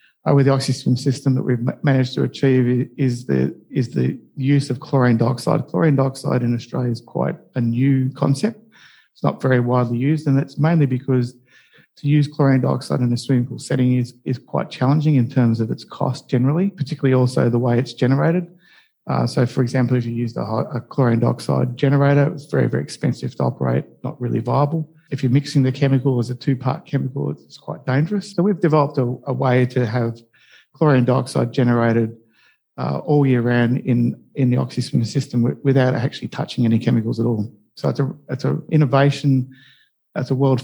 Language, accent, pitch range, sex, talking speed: English, Australian, 120-140 Hz, male, 195 wpm